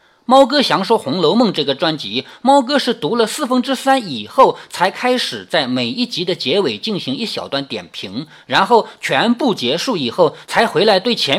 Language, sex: Chinese, male